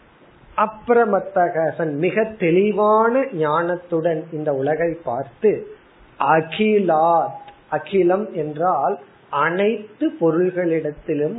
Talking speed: 60 wpm